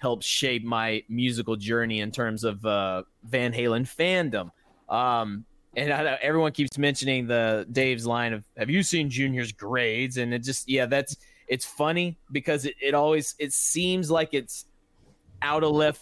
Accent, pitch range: American, 115-145 Hz